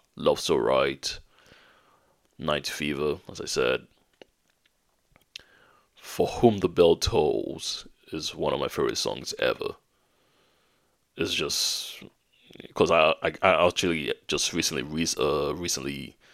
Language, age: English, 20-39